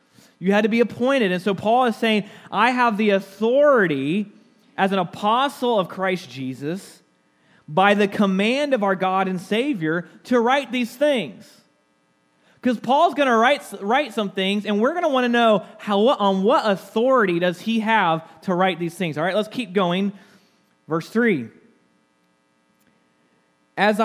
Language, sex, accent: English, male, American